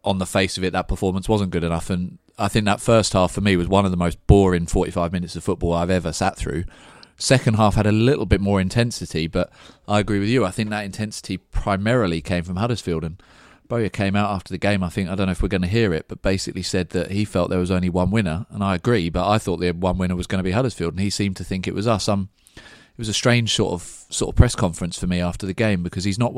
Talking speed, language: 280 wpm, English